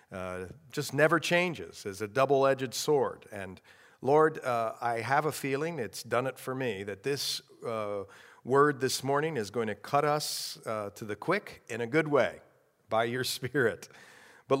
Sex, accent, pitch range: male, American, 110-145 Hz